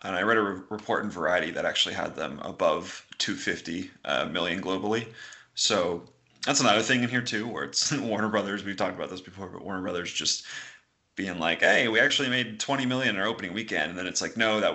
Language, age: English, 30-49